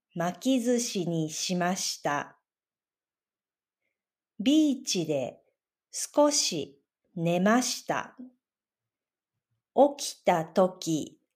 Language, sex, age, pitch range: Japanese, female, 40-59, 180-255 Hz